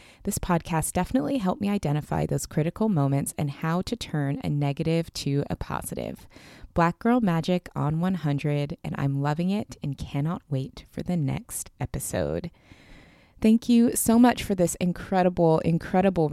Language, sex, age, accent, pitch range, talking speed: English, female, 20-39, American, 140-180 Hz, 155 wpm